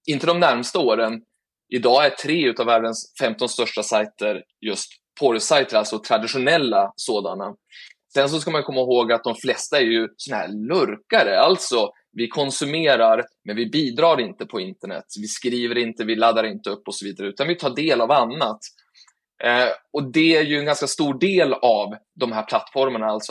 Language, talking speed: Swedish, 180 wpm